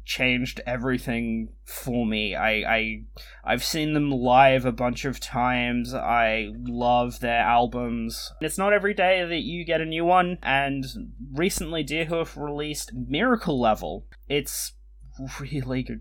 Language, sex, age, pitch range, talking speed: English, male, 20-39, 120-150 Hz, 135 wpm